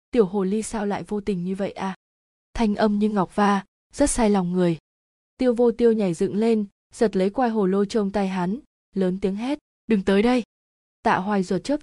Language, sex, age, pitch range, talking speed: Vietnamese, female, 20-39, 190-230 Hz, 220 wpm